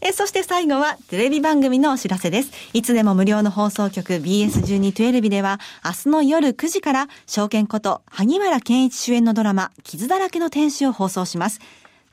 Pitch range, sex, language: 200-295 Hz, female, Japanese